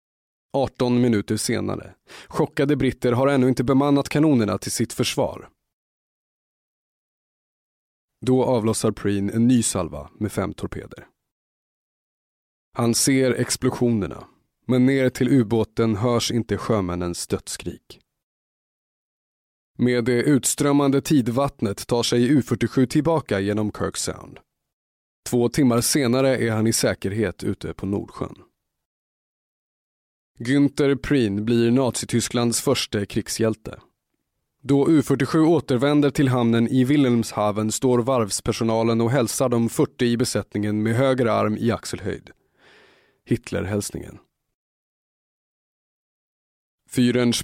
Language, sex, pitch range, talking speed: Swedish, male, 105-135 Hz, 105 wpm